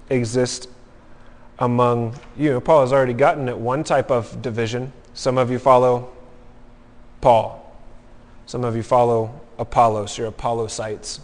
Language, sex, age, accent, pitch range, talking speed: English, male, 30-49, American, 120-140 Hz, 130 wpm